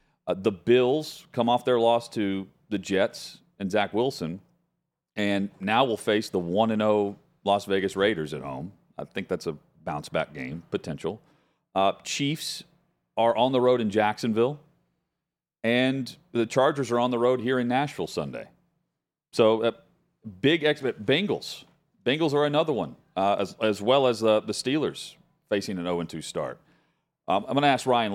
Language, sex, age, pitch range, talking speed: English, male, 40-59, 95-130 Hz, 165 wpm